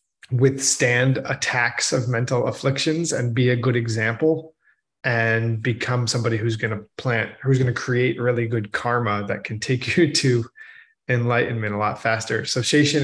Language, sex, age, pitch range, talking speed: English, male, 20-39, 115-135 Hz, 160 wpm